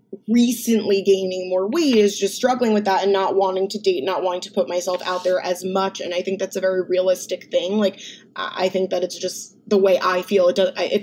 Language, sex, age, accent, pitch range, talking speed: English, female, 20-39, American, 185-220 Hz, 240 wpm